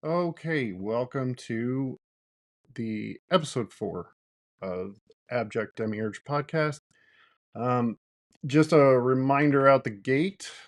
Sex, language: male, English